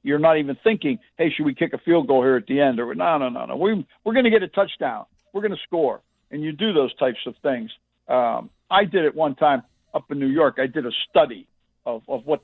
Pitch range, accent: 125-160 Hz, American